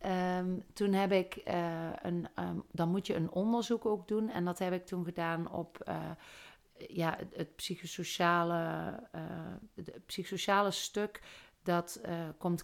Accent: Dutch